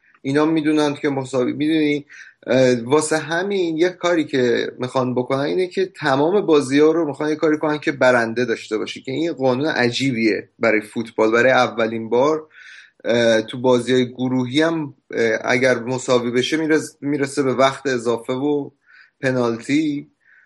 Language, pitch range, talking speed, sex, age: Persian, 125-150 Hz, 140 wpm, male, 30-49